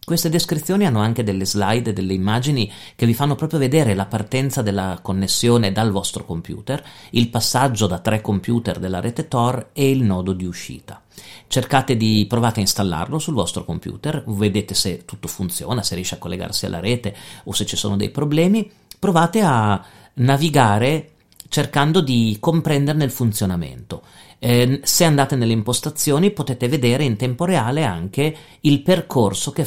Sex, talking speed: male, 160 wpm